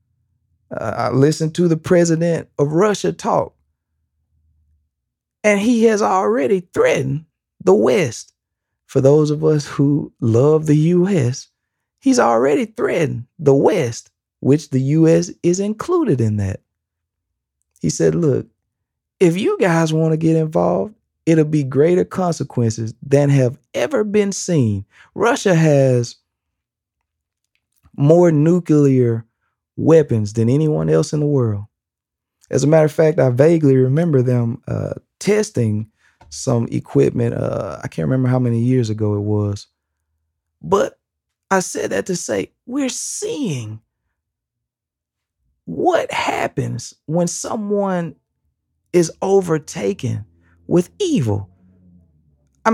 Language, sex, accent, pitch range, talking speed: English, male, American, 105-165 Hz, 120 wpm